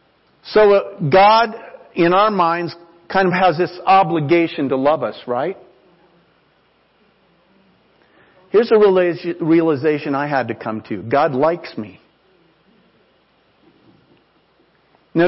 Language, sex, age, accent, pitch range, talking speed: English, male, 50-69, American, 150-205 Hz, 100 wpm